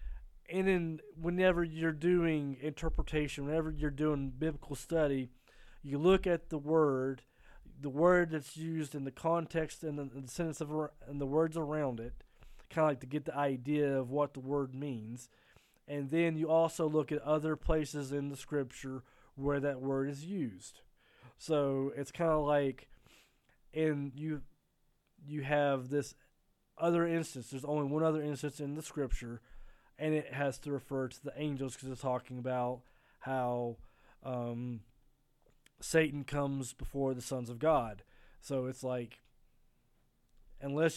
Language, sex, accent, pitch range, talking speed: English, male, American, 130-155 Hz, 155 wpm